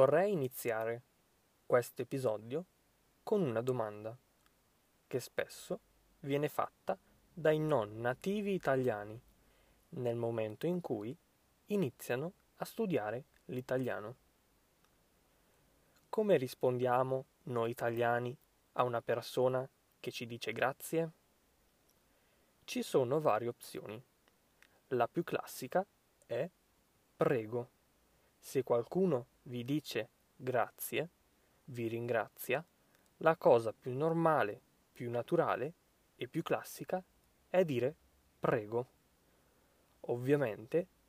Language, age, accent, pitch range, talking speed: Italian, 20-39, native, 120-160 Hz, 90 wpm